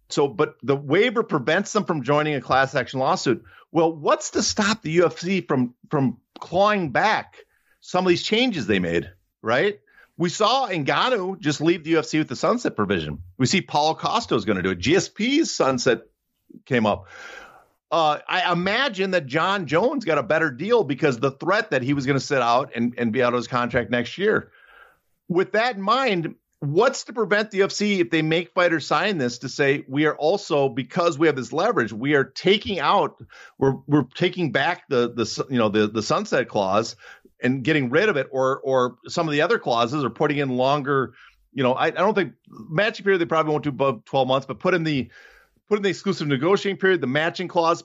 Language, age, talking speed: English, 50-69, 210 wpm